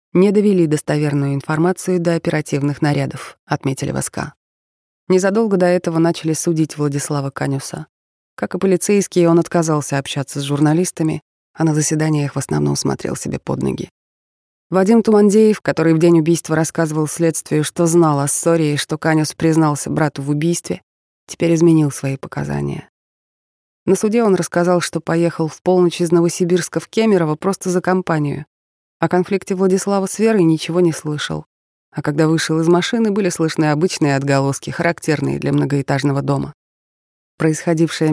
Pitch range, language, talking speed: 145-175 Hz, Russian, 145 wpm